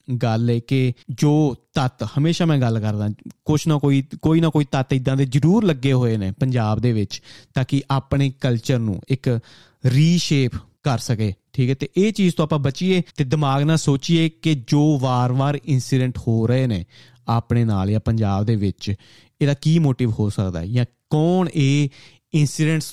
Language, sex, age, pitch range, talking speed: Punjabi, male, 30-49, 115-145 Hz, 180 wpm